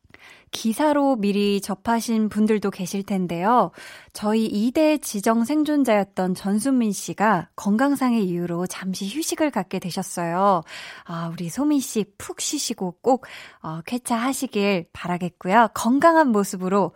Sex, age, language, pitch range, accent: female, 20-39, Korean, 185-270 Hz, native